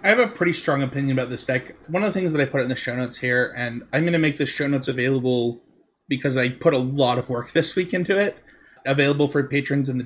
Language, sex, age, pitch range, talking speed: English, male, 30-49, 130-165 Hz, 275 wpm